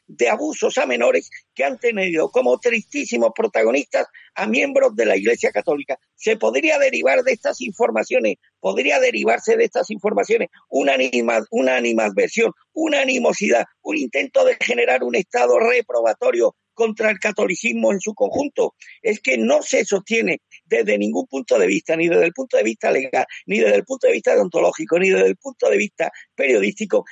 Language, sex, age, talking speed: Spanish, male, 50-69, 170 wpm